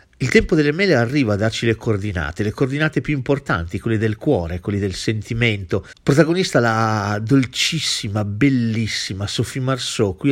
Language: Italian